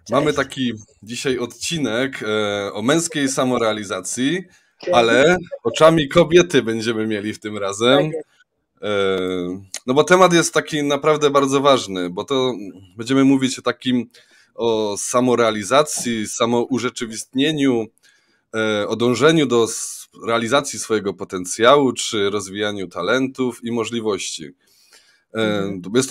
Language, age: Polish, 20-39